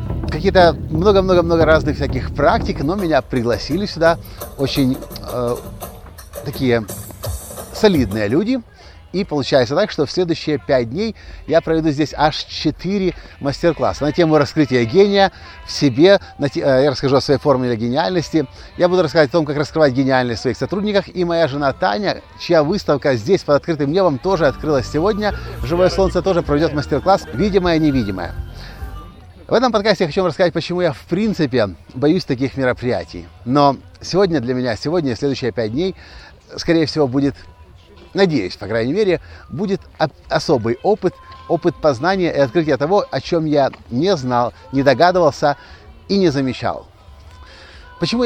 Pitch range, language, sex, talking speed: 125-175 Hz, Russian, male, 150 wpm